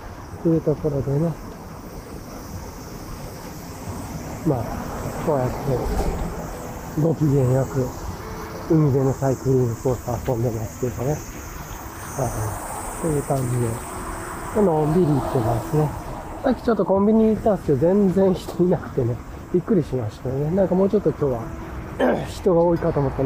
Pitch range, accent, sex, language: 125-185 Hz, native, male, Japanese